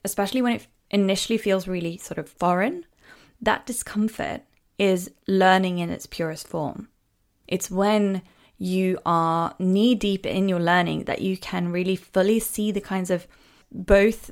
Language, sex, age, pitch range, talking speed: English, female, 20-39, 175-215 Hz, 150 wpm